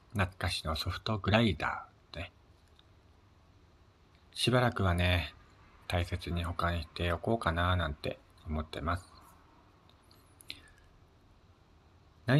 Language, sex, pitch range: Japanese, male, 85-100 Hz